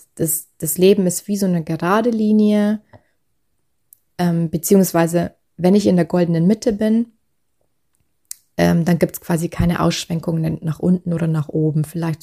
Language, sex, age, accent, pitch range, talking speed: German, female, 20-39, German, 165-205 Hz, 150 wpm